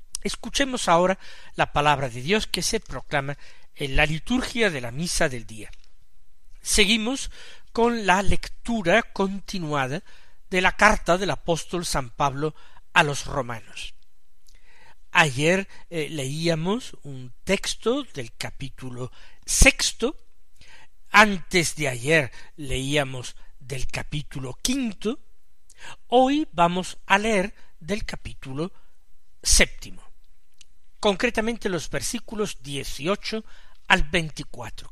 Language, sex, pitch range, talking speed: Spanish, male, 140-210 Hz, 105 wpm